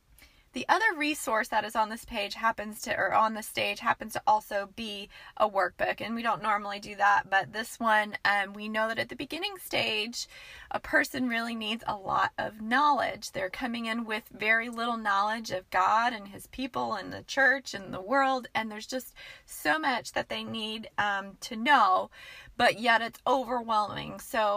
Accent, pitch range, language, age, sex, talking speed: American, 215-270 Hz, English, 30-49, female, 195 wpm